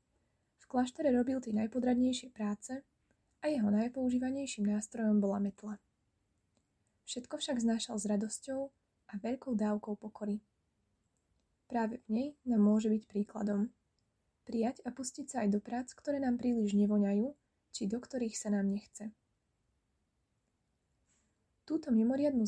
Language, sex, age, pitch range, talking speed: Slovak, female, 20-39, 210-250 Hz, 125 wpm